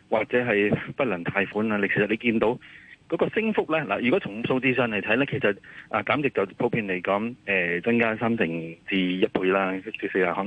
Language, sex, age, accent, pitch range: Chinese, male, 30-49, native, 95-120 Hz